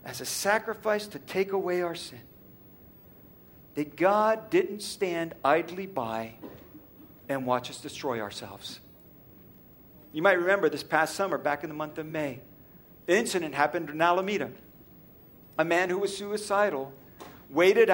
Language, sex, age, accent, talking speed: English, male, 50-69, American, 140 wpm